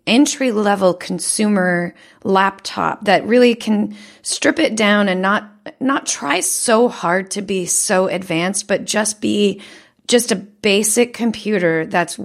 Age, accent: 30-49, American